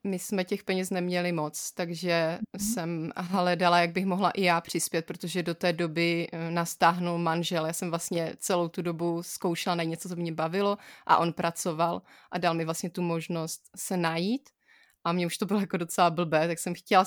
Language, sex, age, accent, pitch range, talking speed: Czech, female, 20-39, native, 170-190 Hz, 195 wpm